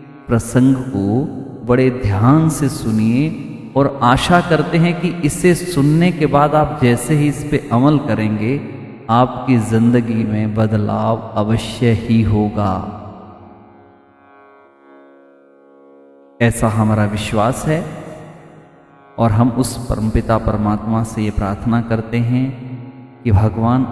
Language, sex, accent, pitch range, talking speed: Hindi, male, native, 110-130 Hz, 115 wpm